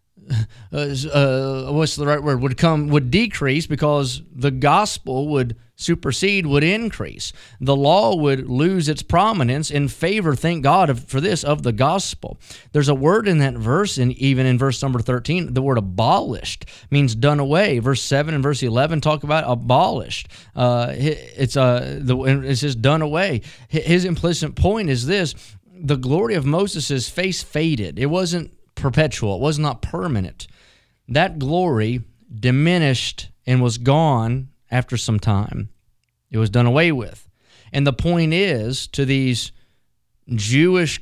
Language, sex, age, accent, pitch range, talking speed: English, male, 30-49, American, 125-155 Hz, 155 wpm